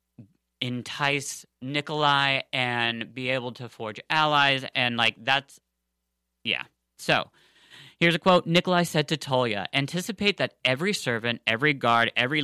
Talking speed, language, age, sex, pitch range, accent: 130 wpm, English, 30-49, male, 120-150 Hz, American